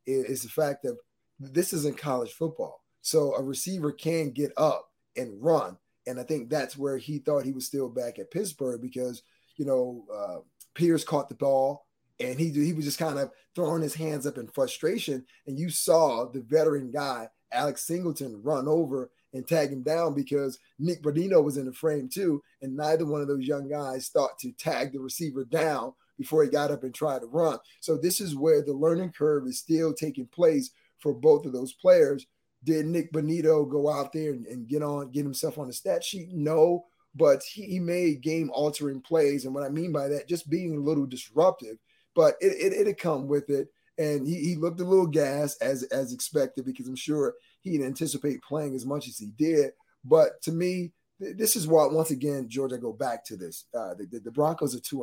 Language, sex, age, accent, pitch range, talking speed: English, male, 20-39, American, 135-160 Hz, 210 wpm